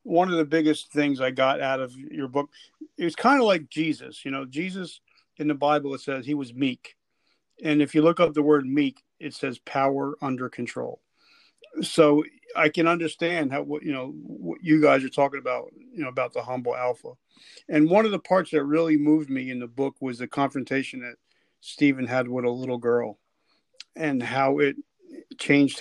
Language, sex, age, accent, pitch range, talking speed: English, male, 50-69, American, 135-160 Hz, 200 wpm